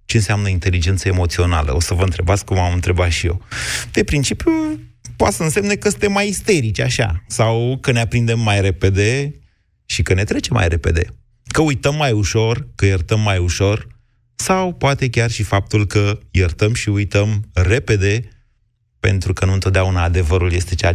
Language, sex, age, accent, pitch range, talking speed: Romanian, male, 30-49, native, 95-130 Hz, 170 wpm